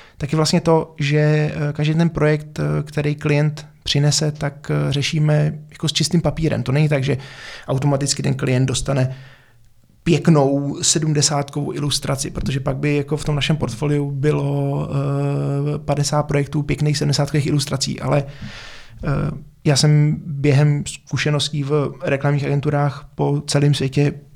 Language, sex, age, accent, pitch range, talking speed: Czech, male, 20-39, native, 135-150 Hz, 130 wpm